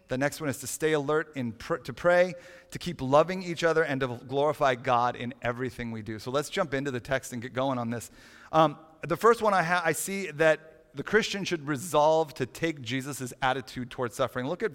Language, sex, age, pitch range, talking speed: English, male, 30-49, 130-165 Hz, 230 wpm